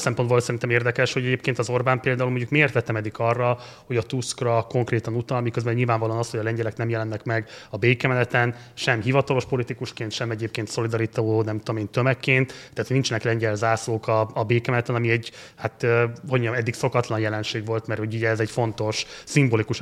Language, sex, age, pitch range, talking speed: Hungarian, male, 30-49, 115-125 Hz, 175 wpm